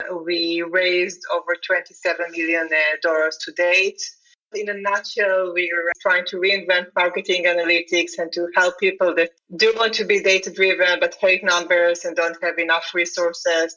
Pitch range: 175-205 Hz